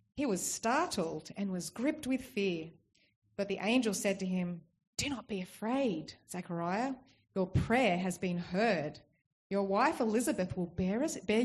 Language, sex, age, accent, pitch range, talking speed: English, female, 30-49, Australian, 170-220 Hz, 150 wpm